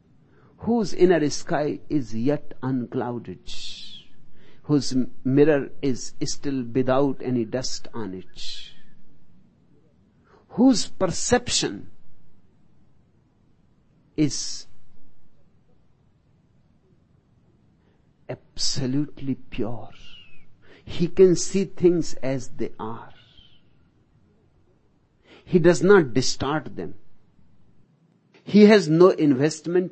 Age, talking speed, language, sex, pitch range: 60-79, 70 wpm, Hindi, male, 135-180 Hz